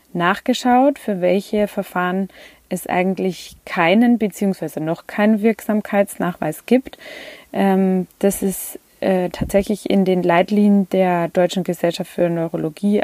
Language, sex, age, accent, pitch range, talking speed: German, female, 20-39, German, 175-210 Hz, 105 wpm